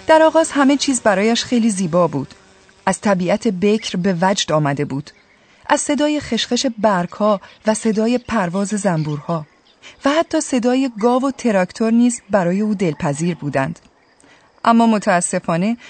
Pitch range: 165-230 Hz